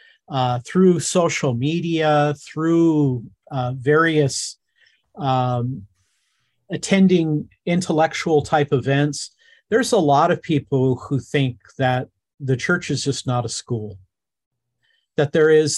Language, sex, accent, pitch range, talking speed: English, male, American, 125-165 Hz, 115 wpm